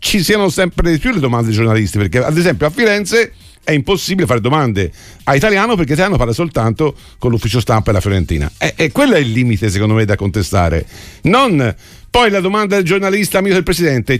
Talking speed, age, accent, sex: 200 wpm, 50-69, native, male